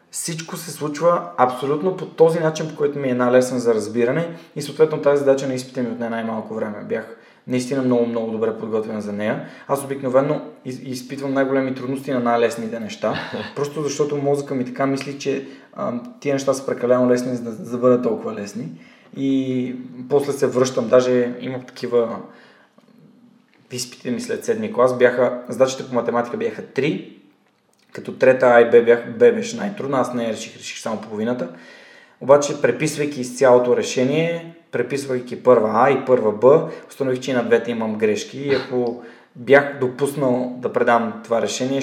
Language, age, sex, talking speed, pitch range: Bulgarian, 20-39, male, 160 wpm, 120-145 Hz